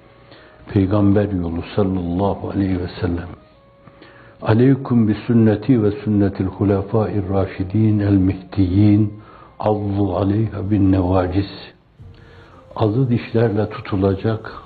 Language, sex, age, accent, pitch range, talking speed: Turkish, male, 60-79, native, 95-115 Hz, 85 wpm